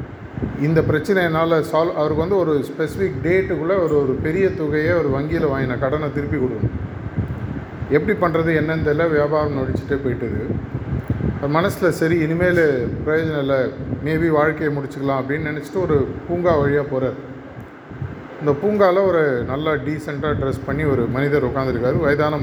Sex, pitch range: male, 130-160 Hz